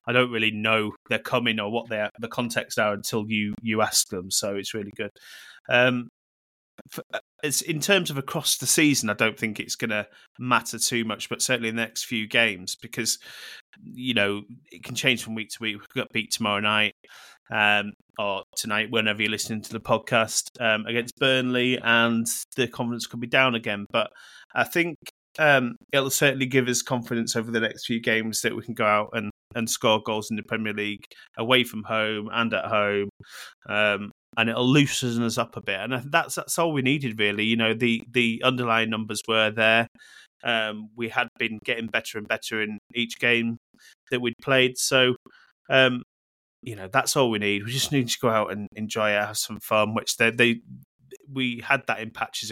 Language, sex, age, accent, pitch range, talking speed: English, male, 20-39, British, 110-125 Hz, 205 wpm